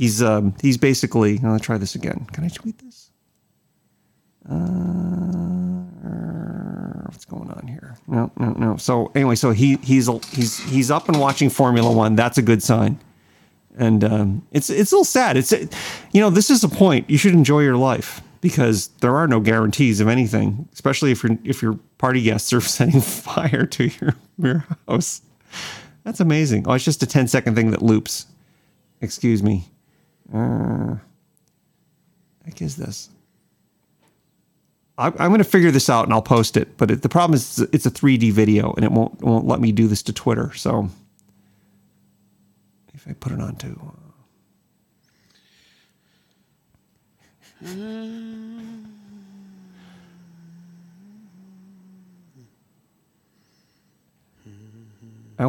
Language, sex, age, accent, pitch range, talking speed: English, male, 30-49, American, 115-180 Hz, 145 wpm